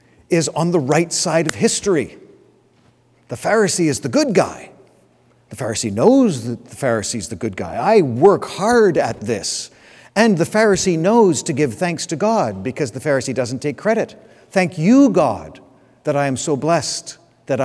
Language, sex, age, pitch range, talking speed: English, male, 50-69, 130-170 Hz, 175 wpm